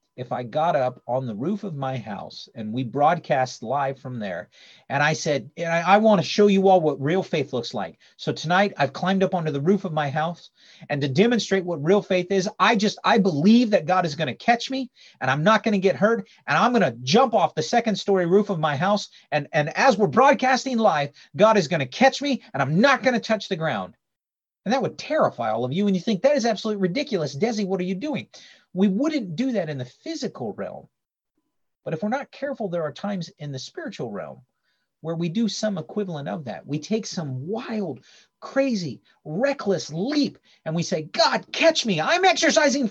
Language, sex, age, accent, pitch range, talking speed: English, male, 40-59, American, 150-220 Hz, 225 wpm